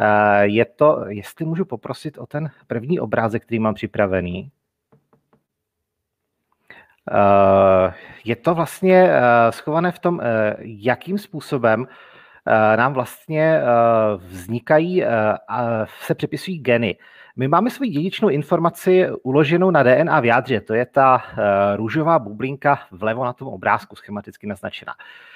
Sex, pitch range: male, 110-165 Hz